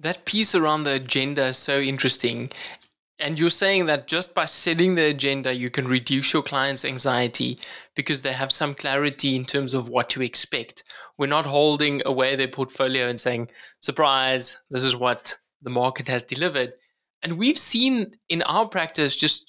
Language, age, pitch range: English, 20-39, 135-165 Hz